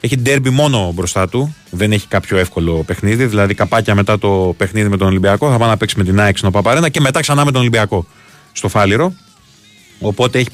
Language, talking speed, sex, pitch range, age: Greek, 205 wpm, male, 100-125 Hz, 30-49